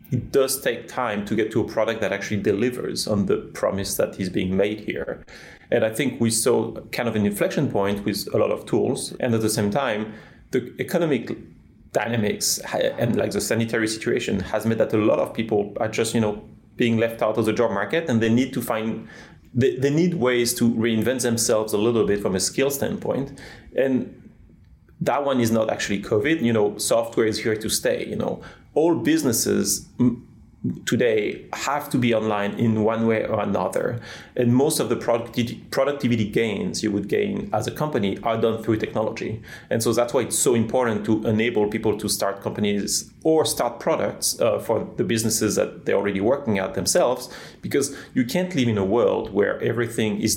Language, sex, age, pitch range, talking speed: English, male, 30-49, 105-120 Hz, 195 wpm